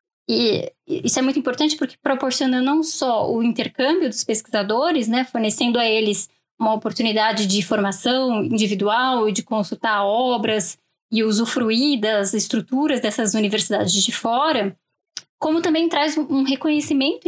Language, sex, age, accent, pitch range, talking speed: Portuguese, female, 10-29, Brazilian, 220-275 Hz, 135 wpm